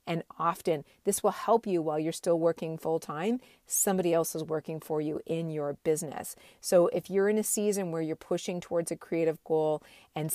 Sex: female